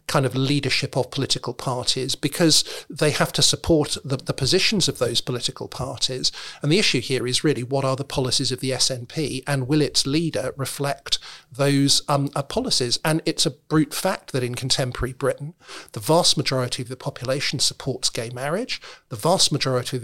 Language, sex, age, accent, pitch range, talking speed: English, male, 50-69, British, 130-160 Hz, 185 wpm